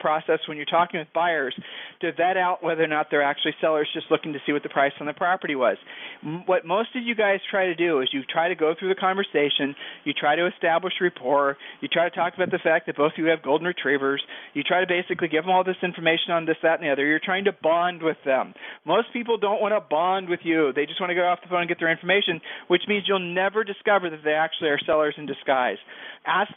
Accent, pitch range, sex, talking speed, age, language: American, 155-195 Hz, male, 260 wpm, 40-59, English